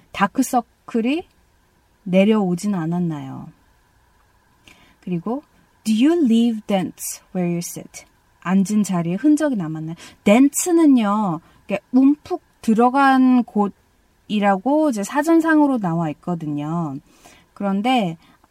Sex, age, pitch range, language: female, 20-39, 185-240 Hz, Korean